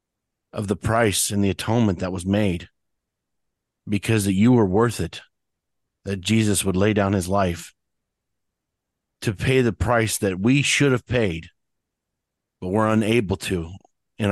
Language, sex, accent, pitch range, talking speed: English, male, American, 95-115 Hz, 150 wpm